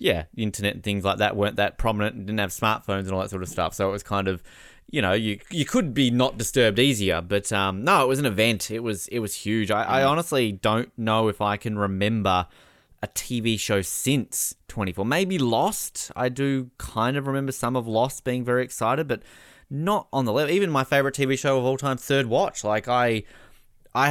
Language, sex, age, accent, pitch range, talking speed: English, male, 20-39, Australian, 100-125 Hz, 225 wpm